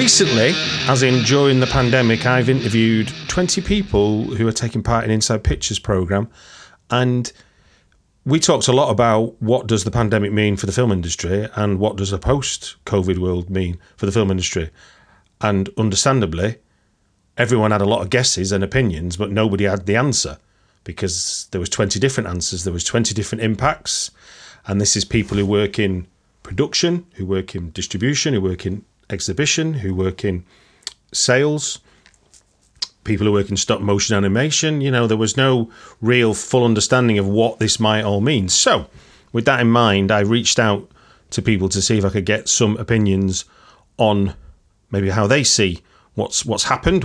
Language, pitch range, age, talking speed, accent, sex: English, 100-125 Hz, 40-59, 175 wpm, British, male